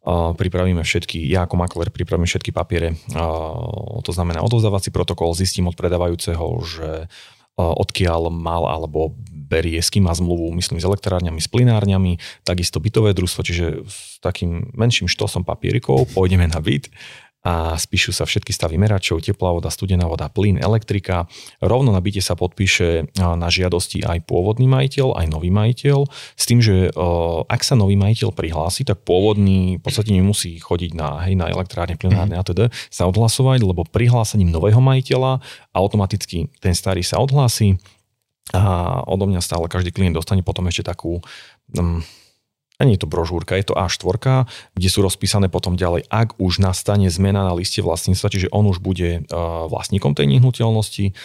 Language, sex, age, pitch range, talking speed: Slovak, male, 30-49, 85-105 Hz, 155 wpm